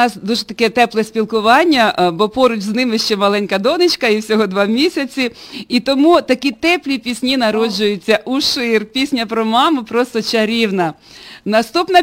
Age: 40-59